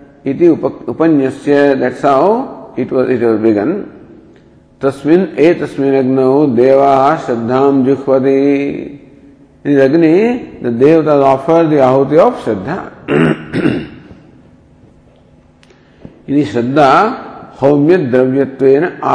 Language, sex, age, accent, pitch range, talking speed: English, male, 50-69, Indian, 125-150 Hz, 105 wpm